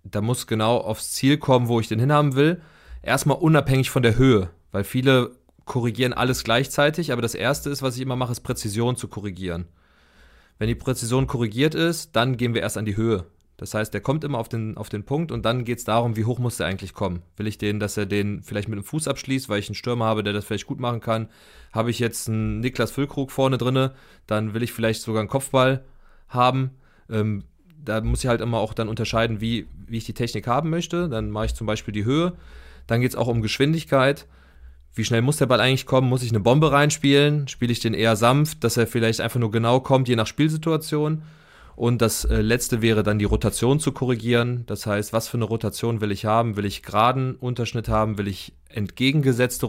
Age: 30-49